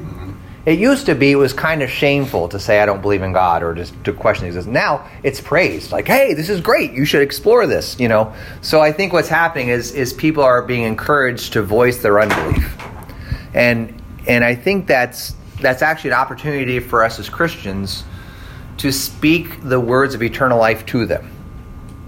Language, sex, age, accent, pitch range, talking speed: English, male, 30-49, American, 110-160 Hz, 195 wpm